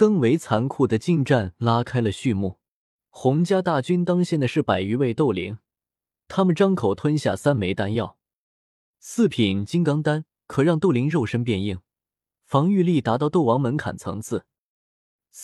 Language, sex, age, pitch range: Chinese, male, 20-39, 110-165 Hz